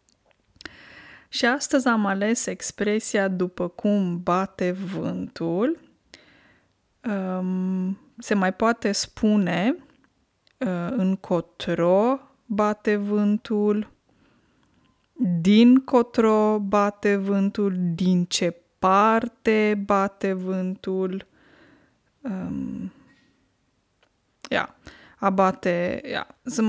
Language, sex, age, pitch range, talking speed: Romanian, female, 20-39, 185-225 Hz, 60 wpm